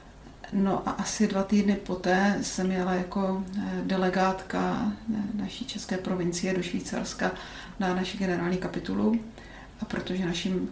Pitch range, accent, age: 180-200 Hz, native, 40-59